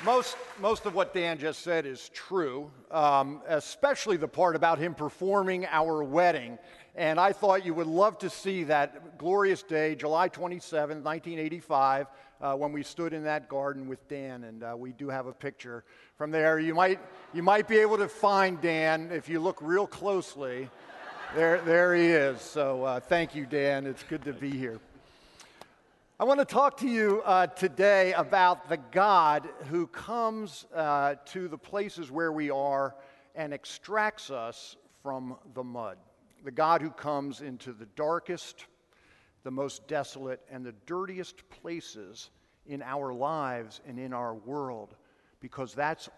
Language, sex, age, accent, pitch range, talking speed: English, male, 50-69, American, 135-175 Hz, 165 wpm